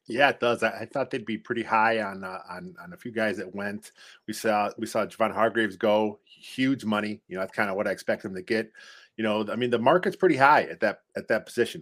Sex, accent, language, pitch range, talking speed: male, American, English, 110-135 Hz, 260 wpm